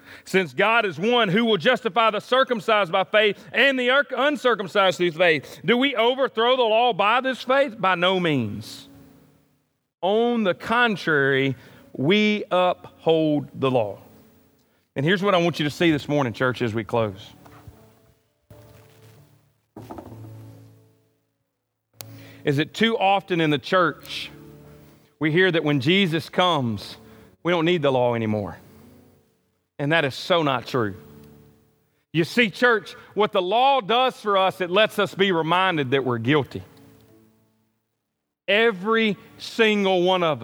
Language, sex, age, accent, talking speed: English, male, 40-59, American, 140 wpm